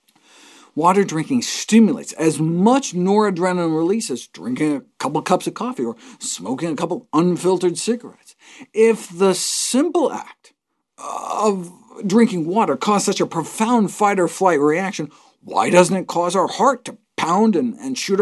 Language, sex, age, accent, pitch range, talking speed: English, male, 50-69, American, 160-240 Hz, 145 wpm